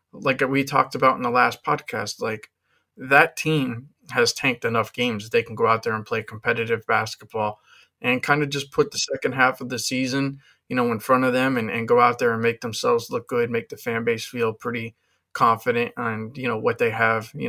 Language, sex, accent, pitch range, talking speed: English, male, American, 115-150 Hz, 225 wpm